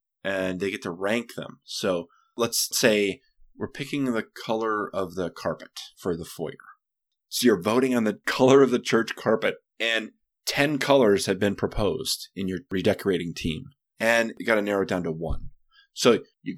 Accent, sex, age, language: American, male, 20-39, English